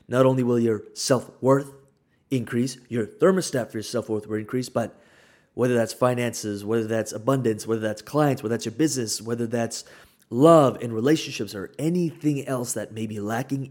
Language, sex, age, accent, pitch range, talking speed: English, male, 30-49, American, 115-135 Hz, 170 wpm